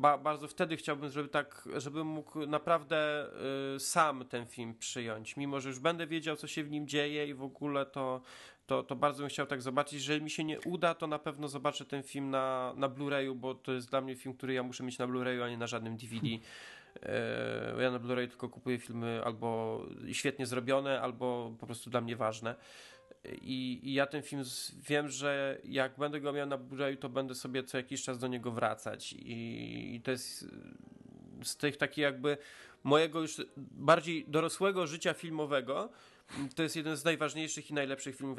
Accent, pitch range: native, 120-145 Hz